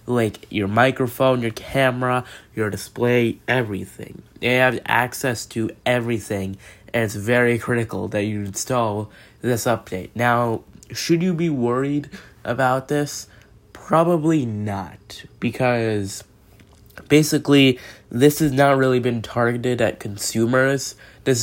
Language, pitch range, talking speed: English, 105-125 Hz, 120 wpm